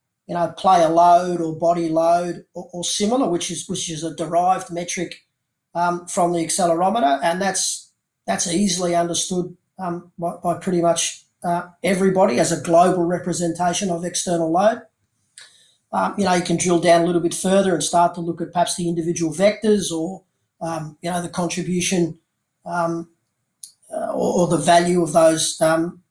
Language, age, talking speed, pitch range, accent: English, 30-49, 170 wpm, 165-180 Hz, Australian